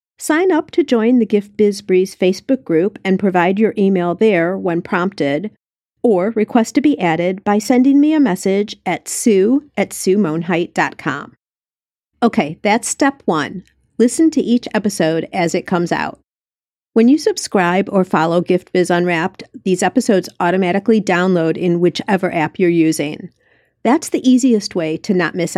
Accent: American